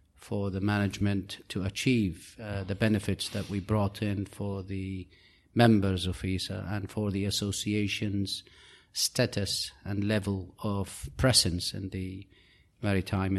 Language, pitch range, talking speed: English, 100-115 Hz, 130 wpm